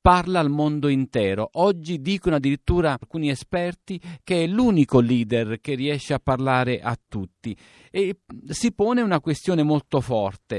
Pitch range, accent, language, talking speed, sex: 125-170 Hz, native, Italian, 145 wpm, male